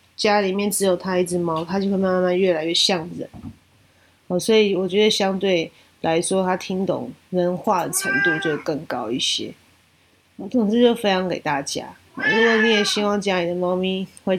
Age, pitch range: 20-39, 170-205 Hz